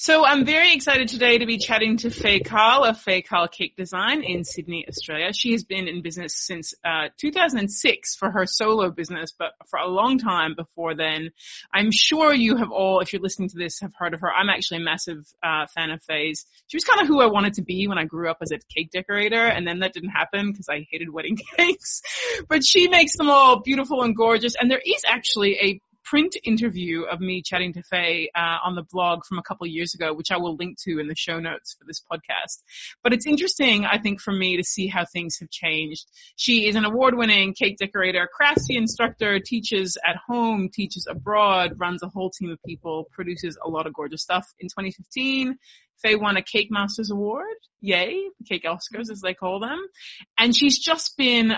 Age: 30-49